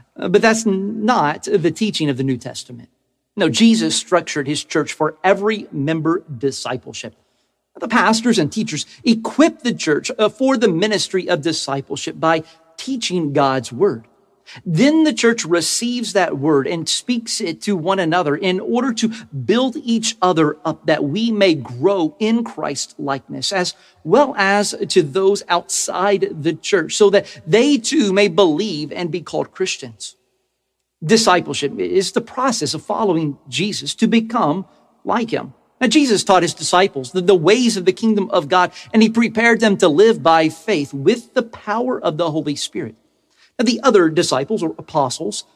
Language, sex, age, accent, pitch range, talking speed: English, male, 50-69, American, 155-225 Hz, 160 wpm